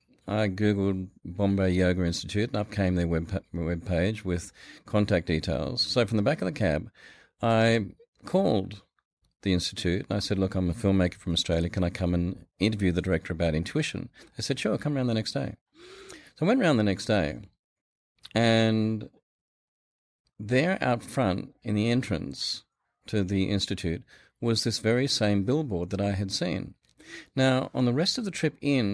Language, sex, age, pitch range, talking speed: English, male, 40-59, 95-120 Hz, 175 wpm